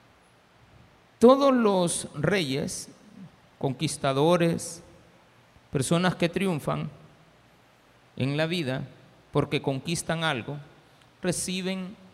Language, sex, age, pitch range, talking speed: Spanish, male, 50-69, 135-180 Hz, 70 wpm